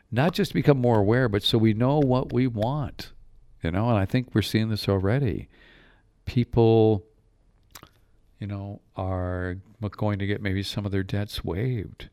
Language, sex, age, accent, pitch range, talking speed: English, male, 50-69, American, 90-110 Hz, 170 wpm